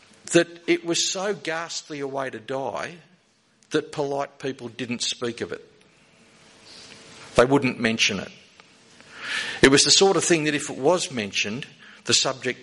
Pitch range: 120-155 Hz